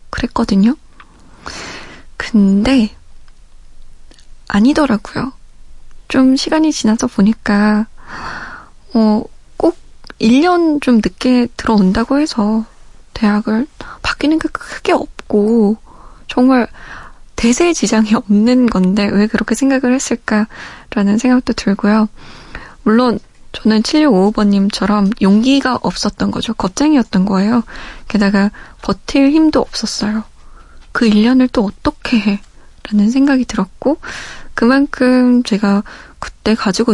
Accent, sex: native, female